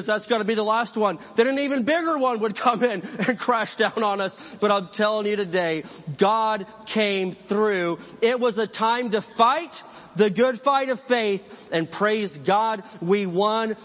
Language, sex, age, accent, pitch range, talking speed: English, male, 30-49, American, 185-230 Hz, 190 wpm